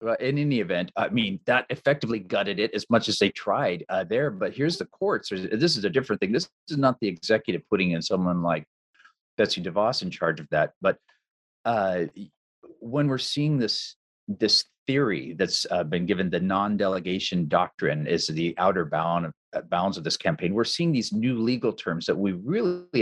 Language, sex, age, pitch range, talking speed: English, male, 40-59, 90-120 Hz, 195 wpm